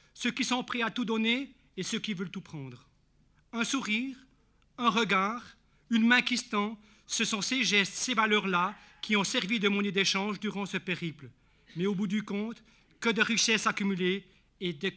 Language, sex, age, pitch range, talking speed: French, male, 60-79, 175-230 Hz, 190 wpm